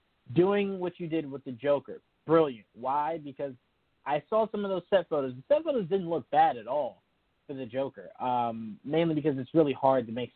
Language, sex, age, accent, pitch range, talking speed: English, male, 20-39, American, 130-165 Hz, 210 wpm